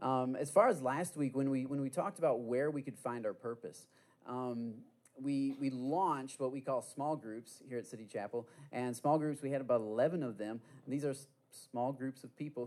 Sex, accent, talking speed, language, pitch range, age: male, American, 225 wpm, English, 120-150 Hz, 30-49